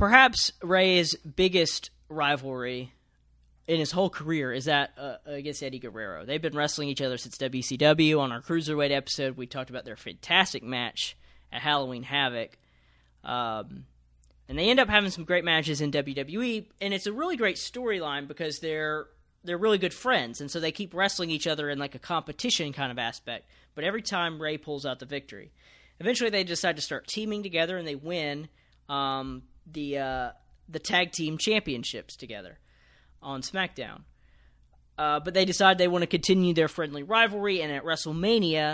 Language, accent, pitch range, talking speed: English, American, 135-175 Hz, 175 wpm